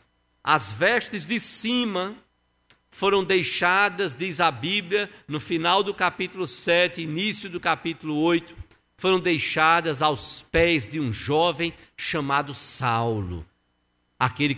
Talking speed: 115 wpm